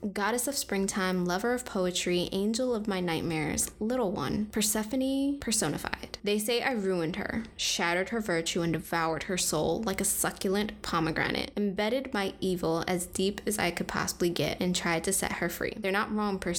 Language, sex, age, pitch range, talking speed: English, female, 20-39, 180-220 Hz, 180 wpm